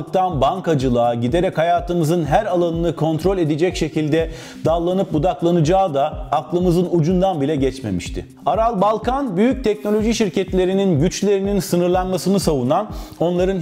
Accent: native